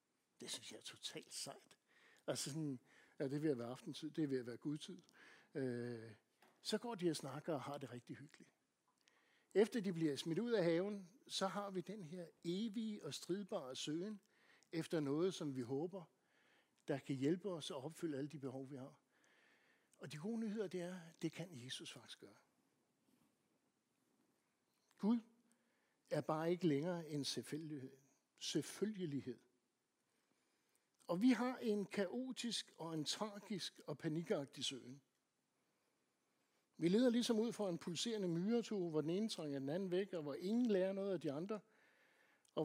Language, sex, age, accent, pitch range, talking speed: Danish, male, 60-79, native, 145-200 Hz, 160 wpm